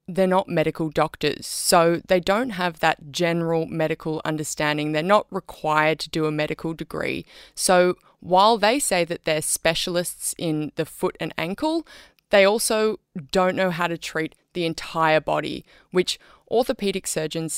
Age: 20-39